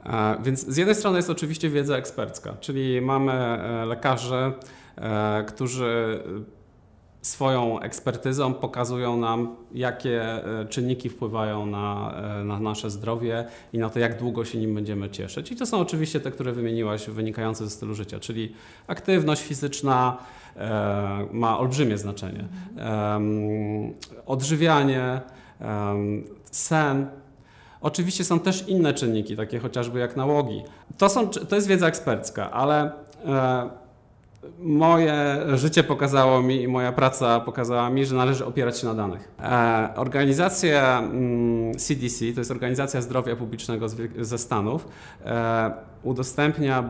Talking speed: 115 wpm